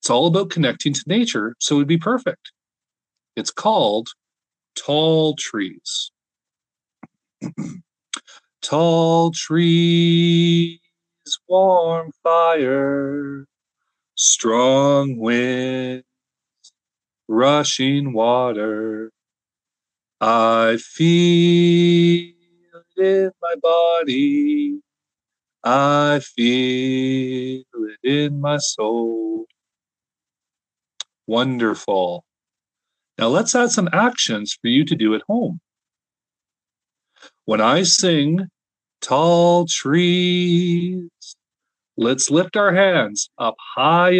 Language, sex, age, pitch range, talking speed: English, male, 40-59, 130-180 Hz, 80 wpm